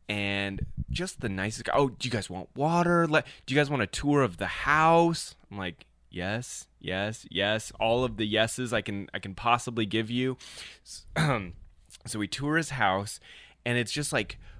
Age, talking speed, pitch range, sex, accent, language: 20-39, 185 wpm, 95-125 Hz, male, American, English